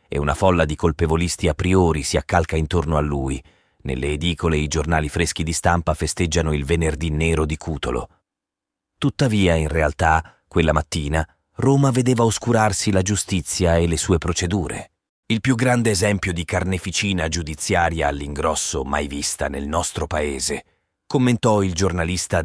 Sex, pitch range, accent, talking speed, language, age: male, 80-105 Hz, native, 145 wpm, Italian, 30-49